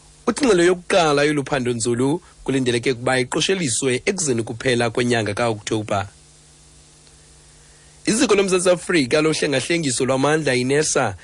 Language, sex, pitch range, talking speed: English, male, 120-150 Hz, 105 wpm